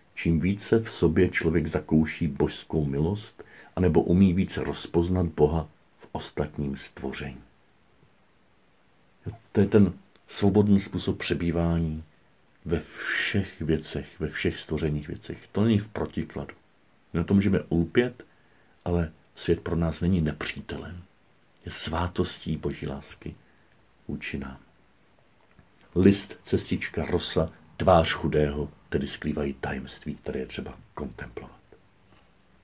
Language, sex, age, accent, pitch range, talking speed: Czech, male, 50-69, native, 80-105 Hz, 110 wpm